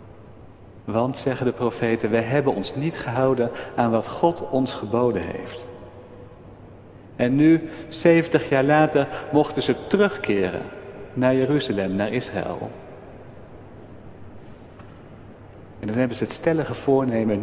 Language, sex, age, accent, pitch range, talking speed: Dutch, male, 50-69, Dutch, 105-140 Hz, 115 wpm